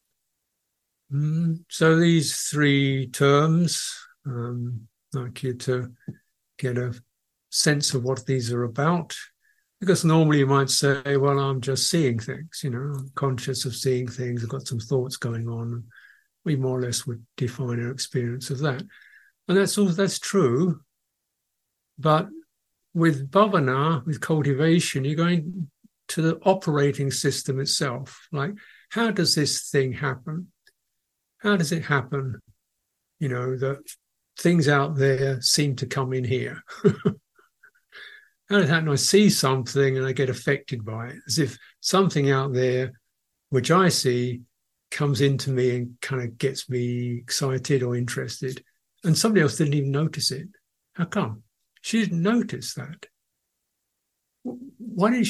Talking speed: 145 wpm